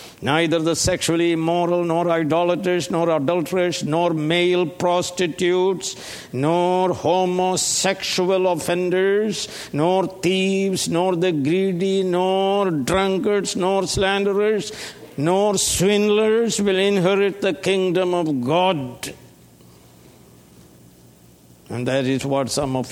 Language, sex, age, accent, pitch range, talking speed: English, male, 60-79, Indian, 135-190 Hz, 95 wpm